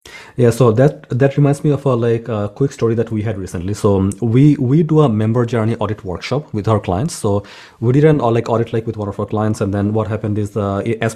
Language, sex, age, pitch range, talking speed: English, male, 30-49, 110-135 Hz, 255 wpm